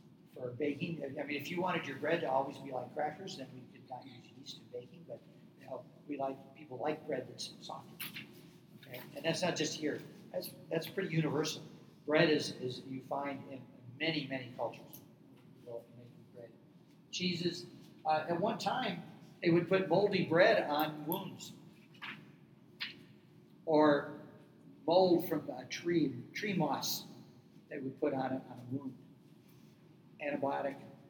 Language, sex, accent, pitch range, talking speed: English, male, American, 130-165 Hz, 155 wpm